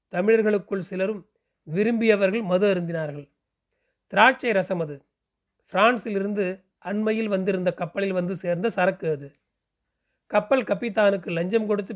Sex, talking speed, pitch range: male, 100 wpm, 180-225 Hz